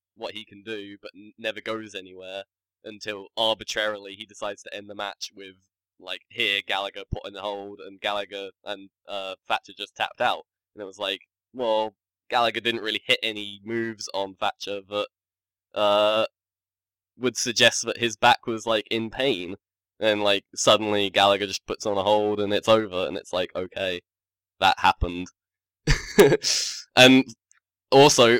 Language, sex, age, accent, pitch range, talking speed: English, male, 10-29, British, 95-110 Hz, 160 wpm